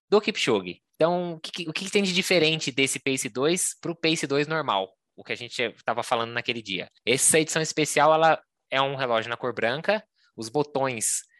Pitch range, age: 120-160 Hz, 20-39